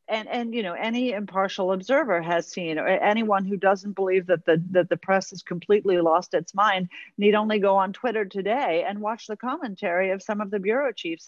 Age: 50-69